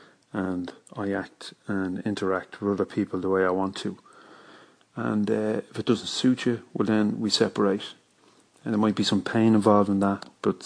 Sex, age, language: male, 30-49, English